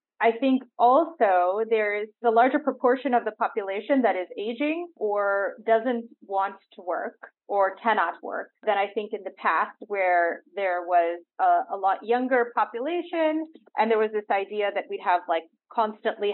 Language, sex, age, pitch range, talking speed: English, female, 30-49, 195-255 Hz, 170 wpm